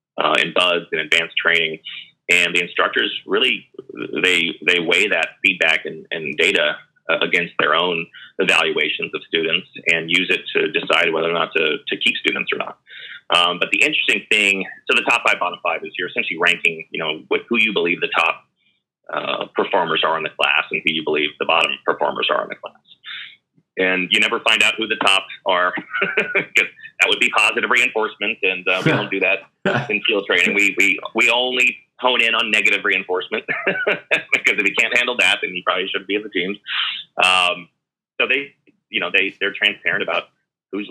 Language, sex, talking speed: English, male, 200 wpm